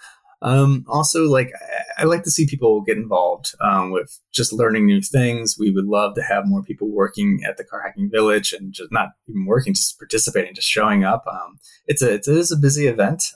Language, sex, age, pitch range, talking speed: English, male, 20-39, 100-160 Hz, 215 wpm